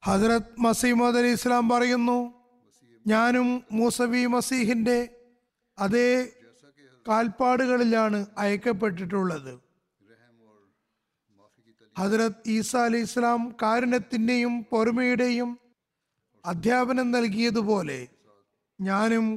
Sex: male